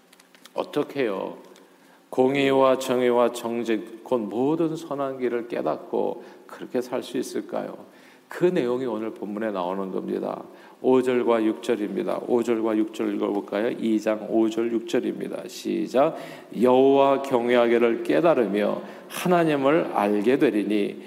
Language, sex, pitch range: Korean, male, 115-155 Hz